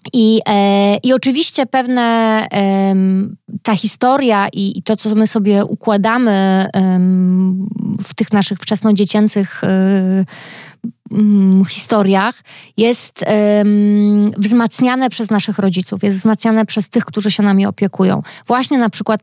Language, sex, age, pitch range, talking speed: Polish, female, 20-39, 190-215 Hz, 120 wpm